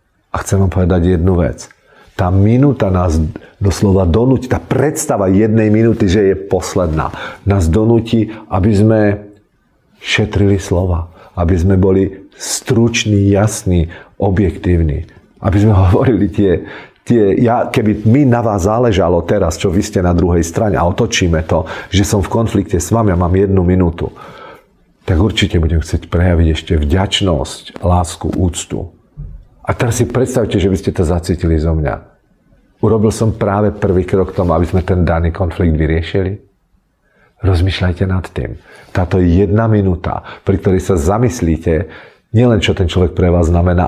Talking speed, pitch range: 150 wpm, 85-105 Hz